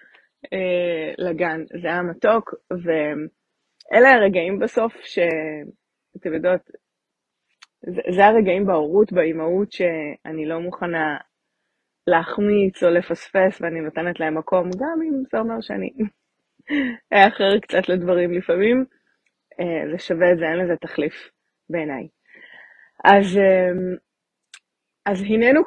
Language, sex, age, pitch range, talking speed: Hebrew, female, 20-39, 170-210 Hz, 110 wpm